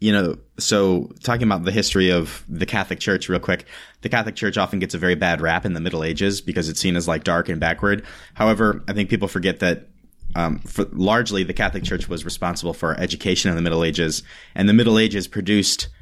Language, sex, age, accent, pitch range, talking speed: English, male, 30-49, American, 85-100 Hz, 220 wpm